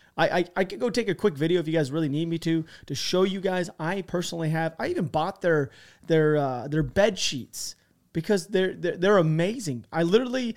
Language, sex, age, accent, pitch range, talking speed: English, male, 30-49, American, 155-200 Hz, 220 wpm